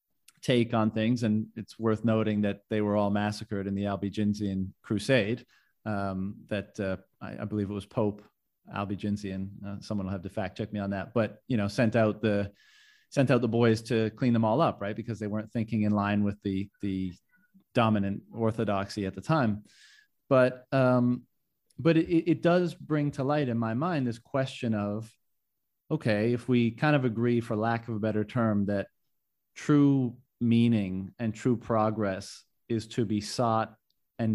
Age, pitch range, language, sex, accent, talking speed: 30-49, 100-120 Hz, English, male, American, 180 wpm